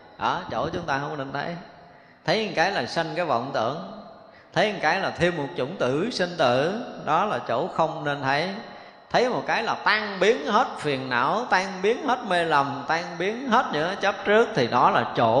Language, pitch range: Vietnamese, 130-180 Hz